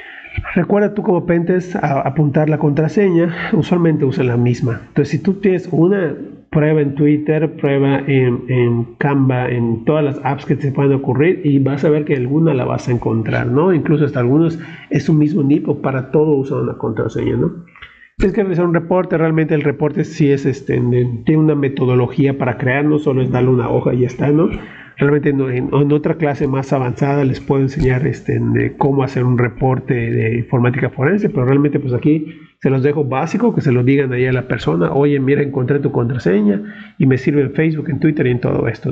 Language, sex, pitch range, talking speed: Spanish, male, 130-155 Hz, 210 wpm